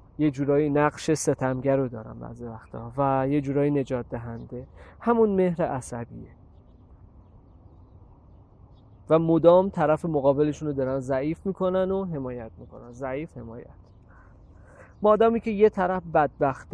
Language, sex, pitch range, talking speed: Persian, male, 125-165 Hz, 120 wpm